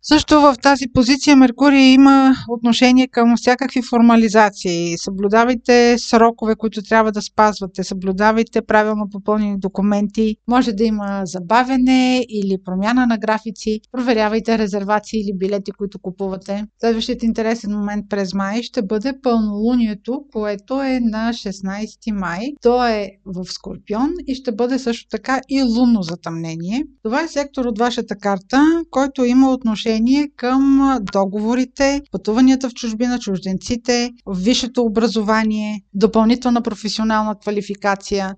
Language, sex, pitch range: Bulgarian, female, 210-250 Hz